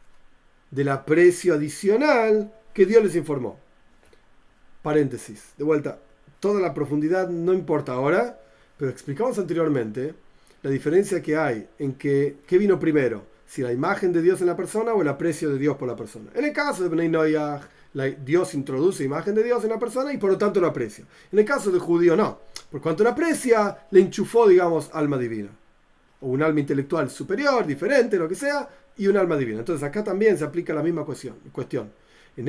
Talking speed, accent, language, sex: 185 wpm, Argentinian, Spanish, male